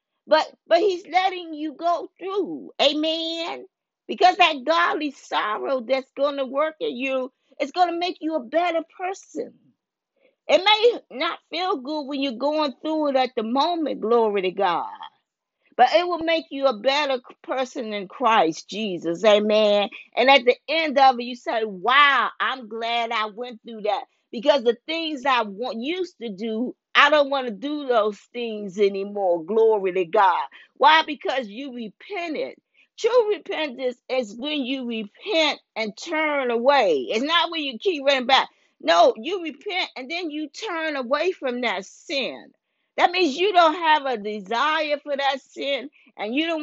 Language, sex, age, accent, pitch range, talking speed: English, female, 40-59, American, 235-325 Hz, 170 wpm